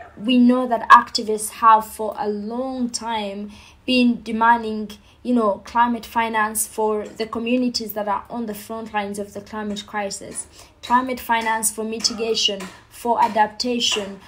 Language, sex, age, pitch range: English, female, 20-39, 215-235 Hz